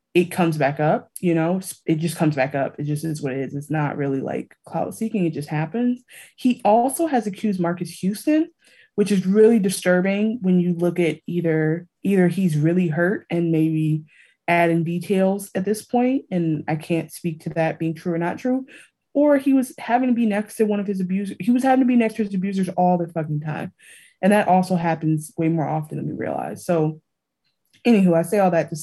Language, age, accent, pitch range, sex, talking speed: English, 20-39, American, 160-200 Hz, female, 220 wpm